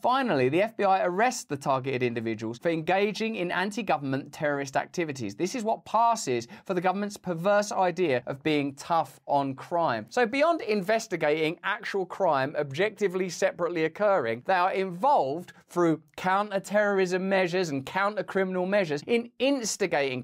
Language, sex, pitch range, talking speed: English, male, 155-210 Hz, 135 wpm